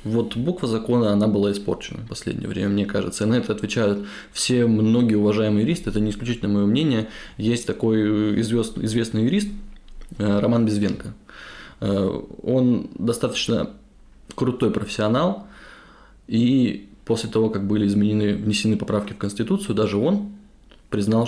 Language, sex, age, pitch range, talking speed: Russian, male, 20-39, 100-115 Hz, 130 wpm